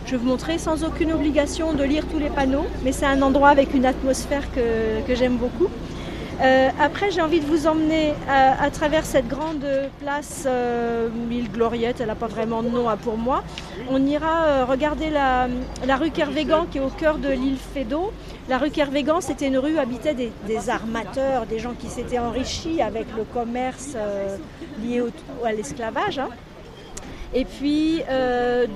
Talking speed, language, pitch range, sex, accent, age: 190 wpm, French, 250-300 Hz, female, French, 40-59